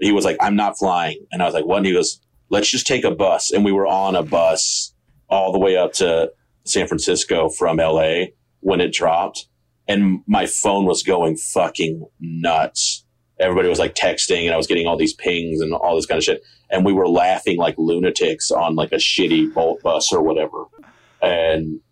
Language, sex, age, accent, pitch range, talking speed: English, male, 30-49, American, 85-140 Hz, 210 wpm